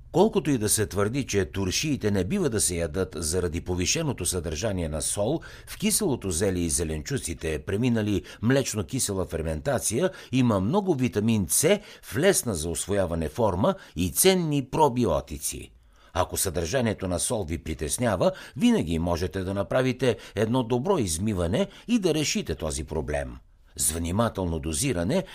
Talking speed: 135 wpm